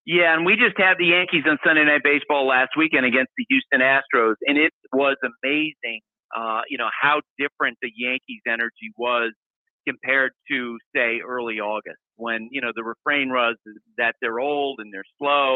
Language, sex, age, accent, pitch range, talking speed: English, male, 50-69, American, 125-165 Hz, 180 wpm